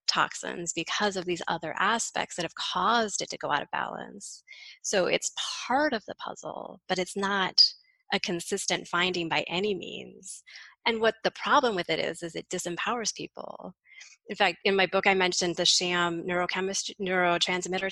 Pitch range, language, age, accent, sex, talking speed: 170-200 Hz, English, 20-39, American, female, 175 wpm